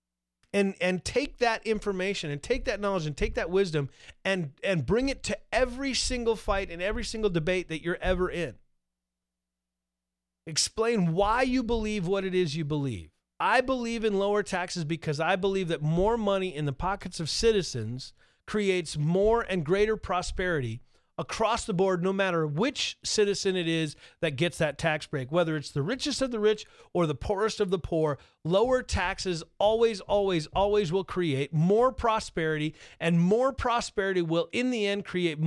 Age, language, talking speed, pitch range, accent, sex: 40-59, English, 175 wpm, 160-220 Hz, American, male